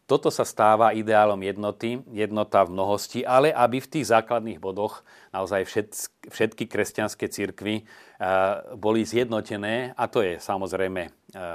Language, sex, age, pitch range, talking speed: Slovak, male, 40-59, 95-110 Hz, 125 wpm